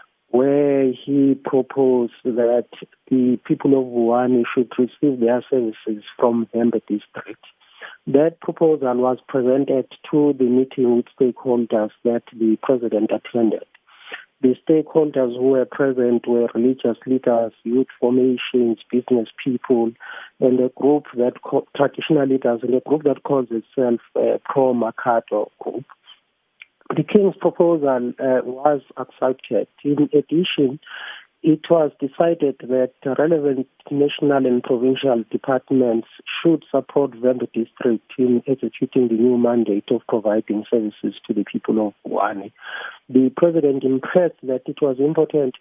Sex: male